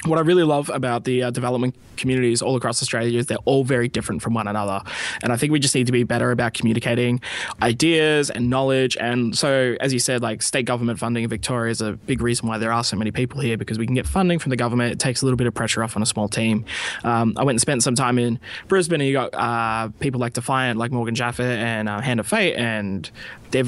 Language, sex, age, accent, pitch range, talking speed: English, male, 20-39, Australian, 115-130 Hz, 255 wpm